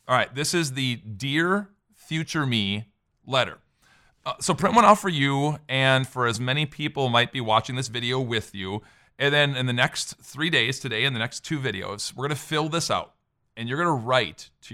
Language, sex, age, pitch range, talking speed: English, male, 40-59, 120-165 Hz, 215 wpm